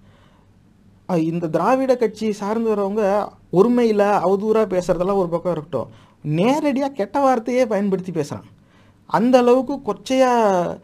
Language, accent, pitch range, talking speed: English, Indian, 160-215 Hz, 95 wpm